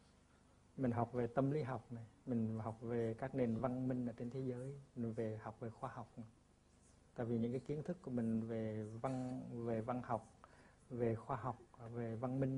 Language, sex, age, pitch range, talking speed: Vietnamese, male, 60-79, 110-130 Hz, 210 wpm